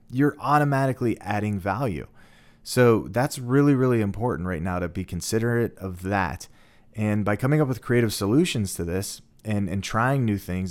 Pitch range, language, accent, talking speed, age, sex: 95-120 Hz, English, American, 170 wpm, 30-49, male